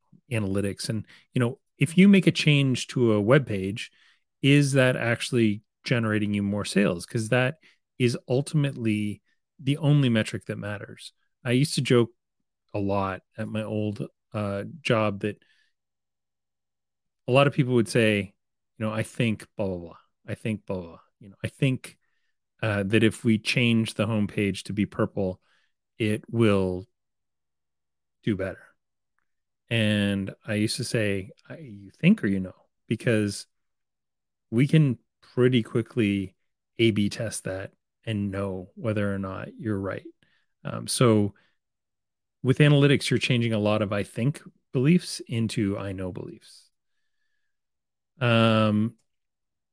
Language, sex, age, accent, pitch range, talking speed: English, male, 30-49, American, 100-125 Hz, 145 wpm